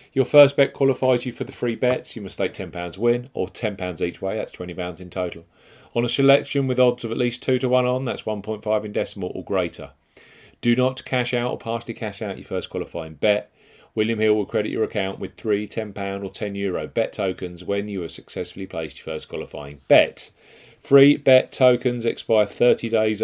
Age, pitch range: 40-59, 95-125 Hz